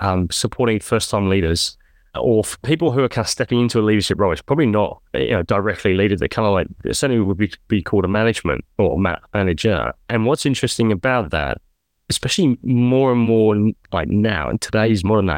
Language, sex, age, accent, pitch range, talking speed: English, male, 30-49, British, 95-120 Hz, 195 wpm